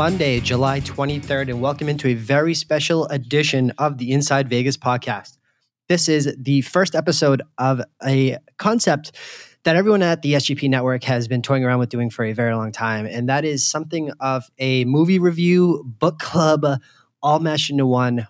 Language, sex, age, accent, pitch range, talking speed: English, male, 20-39, American, 125-150 Hz, 175 wpm